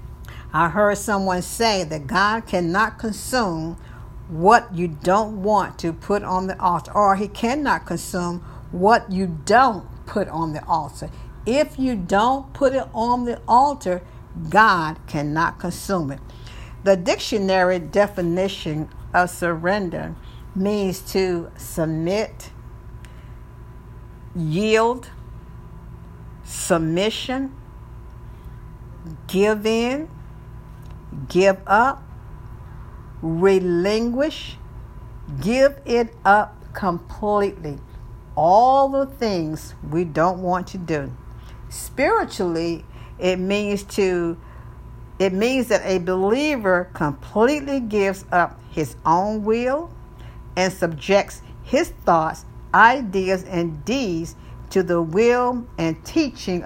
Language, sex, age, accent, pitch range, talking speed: English, female, 60-79, American, 165-215 Hz, 100 wpm